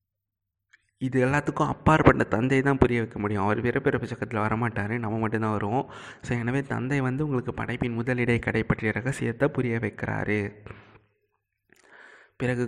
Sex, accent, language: male, native, Tamil